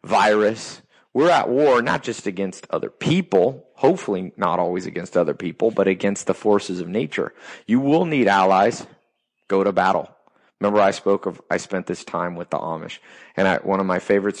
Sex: male